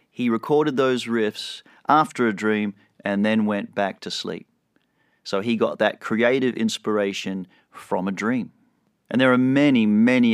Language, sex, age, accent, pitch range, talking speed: English, male, 40-59, Australian, 110-170 Hz, 155 wpm